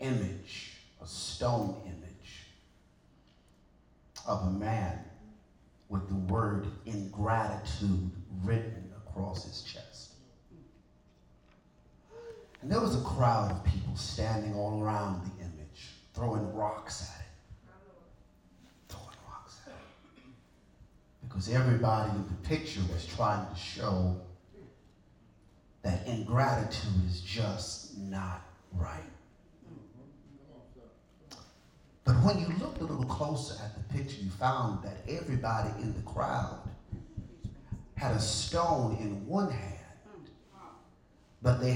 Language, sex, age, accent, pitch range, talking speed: English, male, 40-59, American, 95-115 Hz, 105 wpm